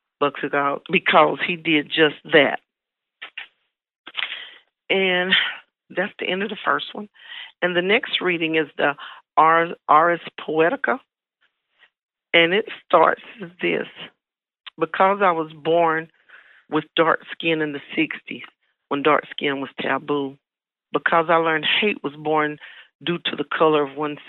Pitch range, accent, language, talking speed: 145-175 Hz, American, English, 135 wpm